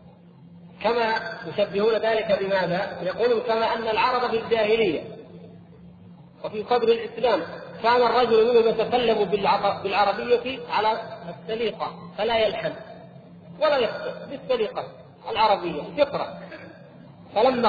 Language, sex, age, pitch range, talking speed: Arabic, male, 40-59, 175-225 Hz, 95 wpm